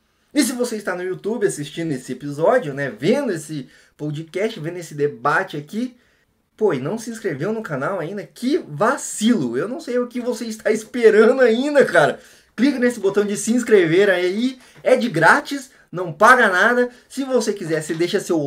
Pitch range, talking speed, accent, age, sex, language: 160-225 Hz, 180 wpm, Brazilian, 20-39, male, Portuguese